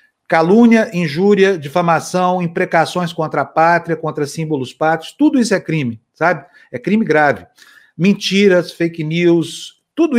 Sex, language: male, Portuguese